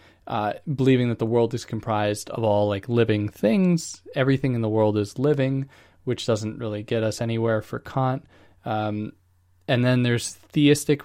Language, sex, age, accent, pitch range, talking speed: English, male, 20-39, American, 105-135 Hz, 170 wpm